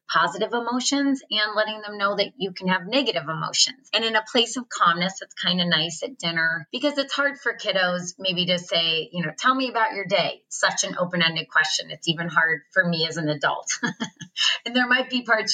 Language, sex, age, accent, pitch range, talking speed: English, female, 30-49, American, 175-225 Hz, 215 wpm